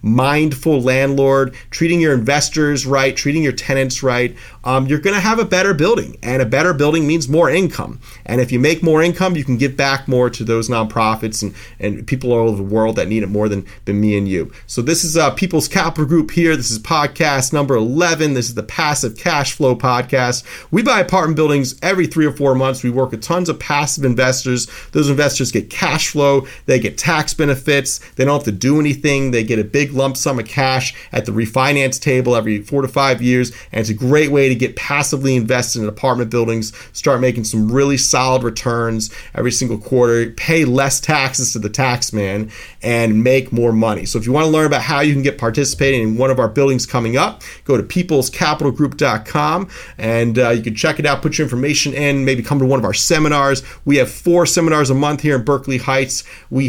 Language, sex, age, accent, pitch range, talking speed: English, male, 30-49, American, 120-145 Hz, 215 wpm